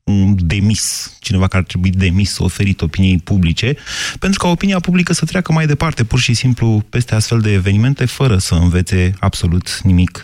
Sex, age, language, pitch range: male, 30-49, Romanian, 100-135 Hz